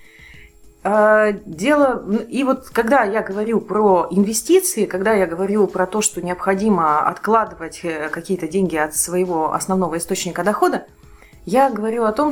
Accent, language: native, Russian